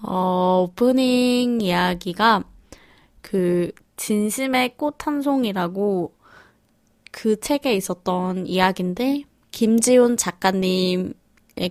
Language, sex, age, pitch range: Korean, female, 20-39, 185-250 Hz